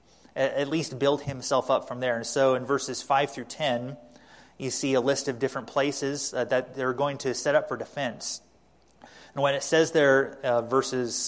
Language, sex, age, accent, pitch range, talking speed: English, male, 30-49, American, 125-140 Hz, 195 wpm